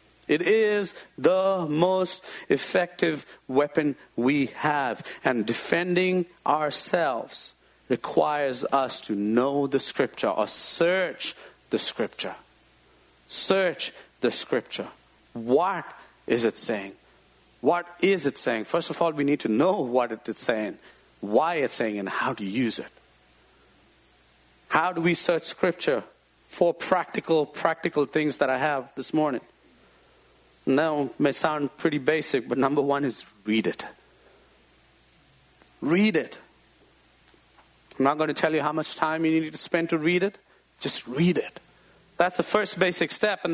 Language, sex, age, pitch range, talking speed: English, male, 50-69, 150-210 Hz, 145 wpm